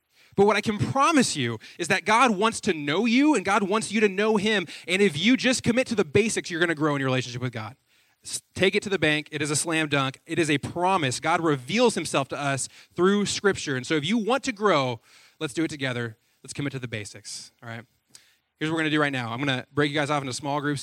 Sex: male